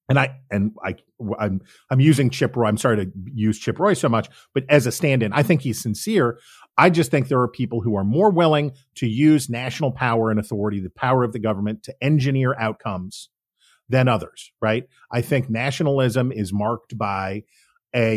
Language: English